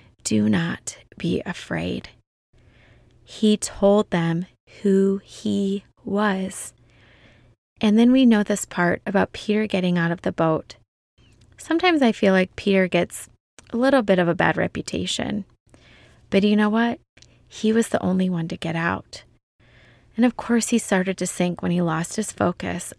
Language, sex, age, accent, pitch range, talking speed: English, female, 20-39, American, 170-205 Hz, 155 wpm